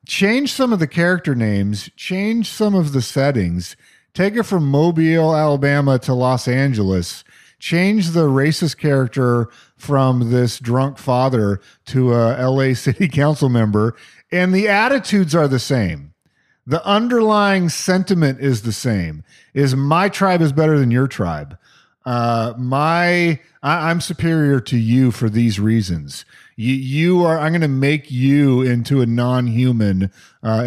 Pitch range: 110-150 Hz